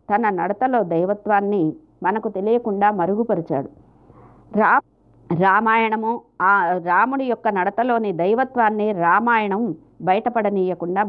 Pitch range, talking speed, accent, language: 185-225 Hz, 75 wpm, native, Telugu